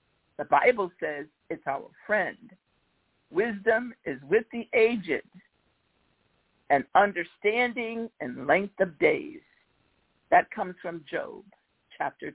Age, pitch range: 60-79, 170-235 Hz